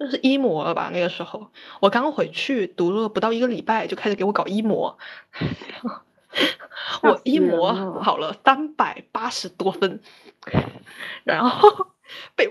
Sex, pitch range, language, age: female, 190-250 Hz, Chinese, 20-39